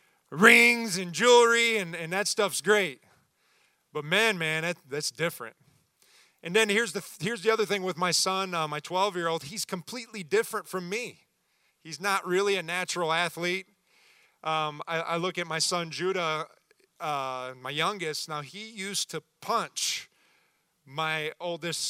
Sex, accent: male, American